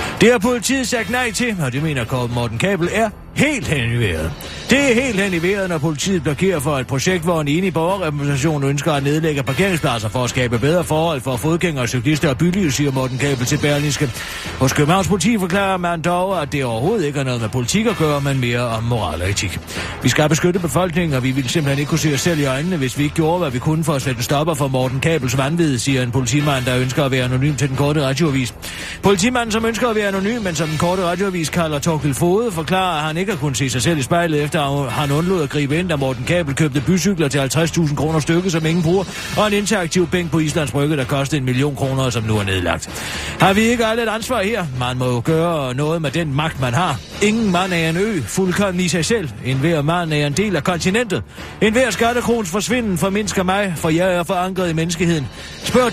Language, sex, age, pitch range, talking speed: Danish, male, 30-49, 135-185 Hz, 220 wpm